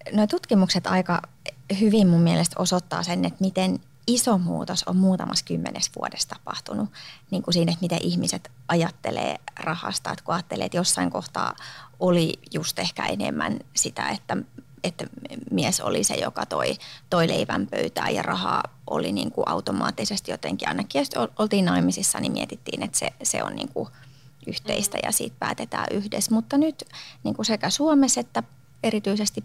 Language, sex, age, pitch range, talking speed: Finnish, female, 30-49, 140-200 Hz, 155 wpm